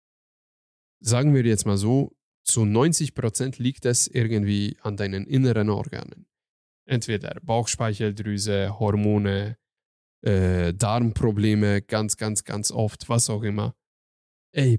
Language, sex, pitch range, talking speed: German, male, 105-155 Hz, 110 wpm